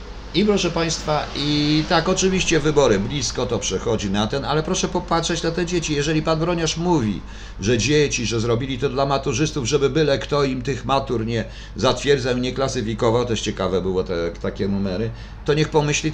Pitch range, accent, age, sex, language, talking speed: 105-145 Hz, native, 50-69, male, Polish, 180 wpm